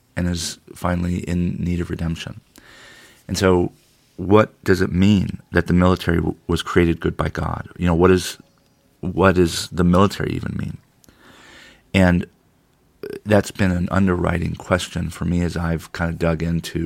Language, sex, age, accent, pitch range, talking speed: English, male, 40-59, American, 85-95 Hz, 165 wpm